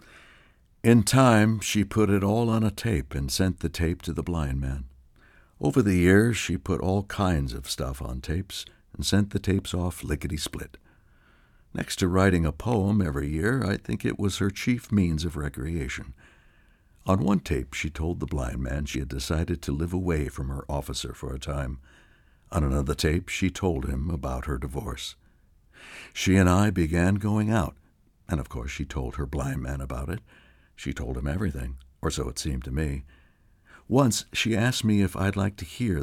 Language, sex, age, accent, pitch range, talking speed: English, male, 60-79, American, 70-95 Hz, 190 wpm